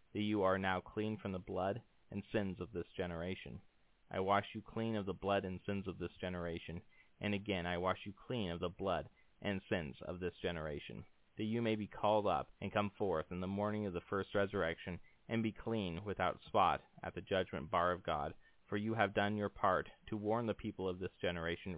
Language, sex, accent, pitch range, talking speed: English, male, American, 90-105 Hz, 220 wpm